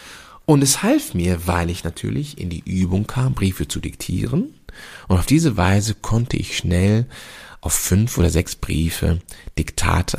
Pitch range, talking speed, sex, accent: 85-120 Hz, 160 wpm, male, German